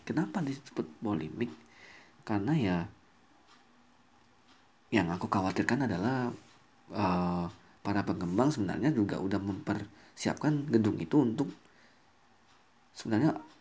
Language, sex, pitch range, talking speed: Indonesian, male, 100-120 Hz, 90 wpm